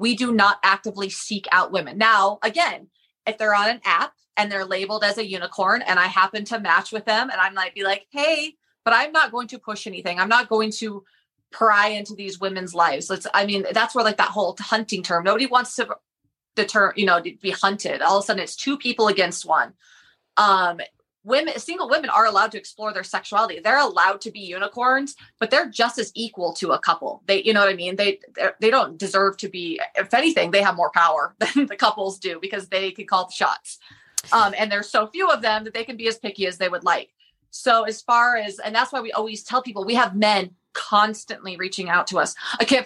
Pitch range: 195-230 Hz